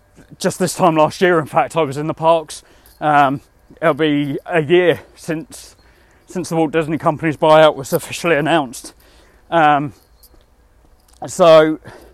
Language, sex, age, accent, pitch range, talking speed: English, male, 20-39, British, 140-180 Hz, 145 wpm